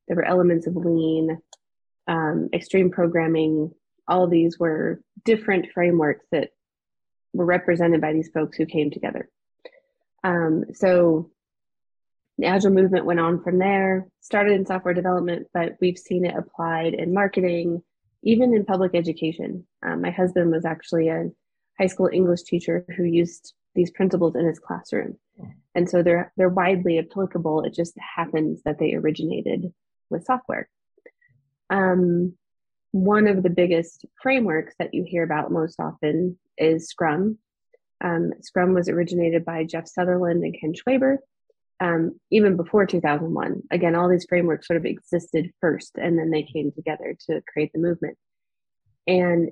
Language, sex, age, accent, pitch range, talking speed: English, female, 20-39, American, 165-185 Hz, 150 wpm